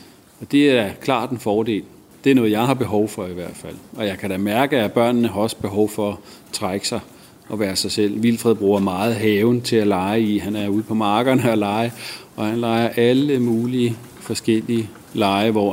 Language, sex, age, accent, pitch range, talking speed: Danish, male, 40-59, native, 105-125 Hz, 220 wpm